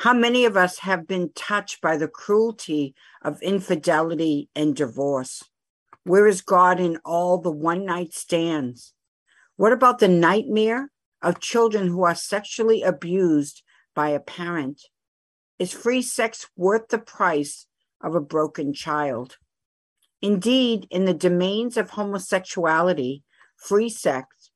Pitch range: 155-215 Hz